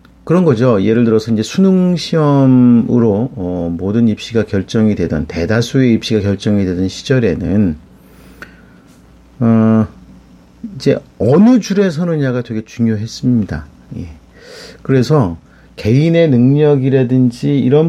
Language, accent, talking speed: English, Korean, 95 wpm